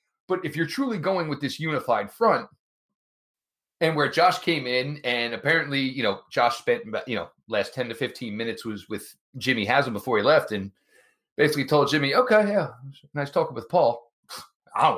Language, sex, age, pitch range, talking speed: English, male, 30-49, 125-185 Hz, 185 wpm